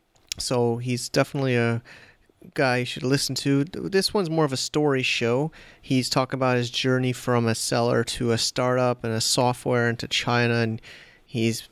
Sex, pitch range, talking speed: male, 115-130 Hz, 175 wpm